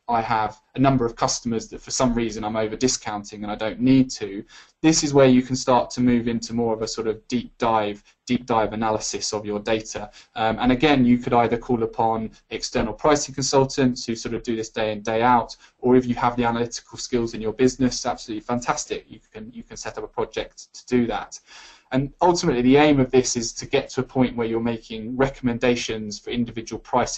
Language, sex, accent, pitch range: English, male, British, 115-130 Hz